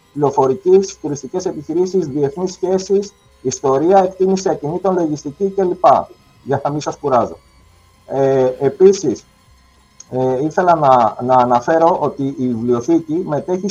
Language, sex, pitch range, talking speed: Greek, male, 130-180 Hz, 100 wpm